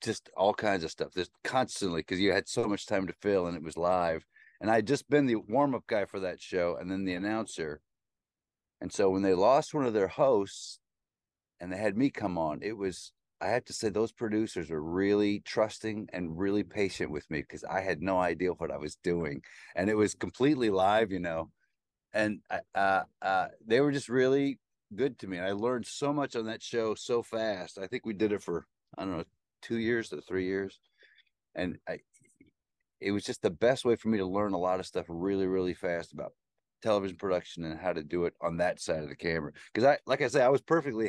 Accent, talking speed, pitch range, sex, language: American, 230 wpm, 90-110 Hz, male, English